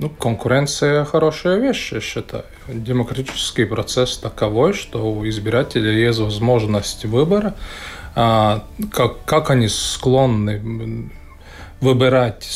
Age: 20-39